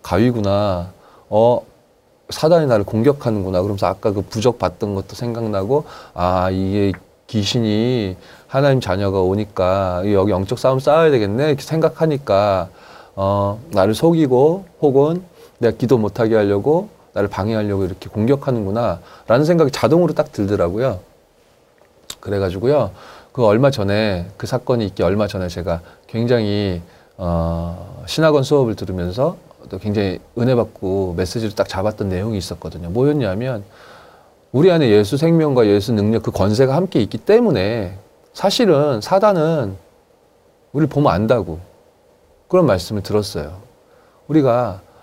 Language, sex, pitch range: Korean, male, 100-130 Hz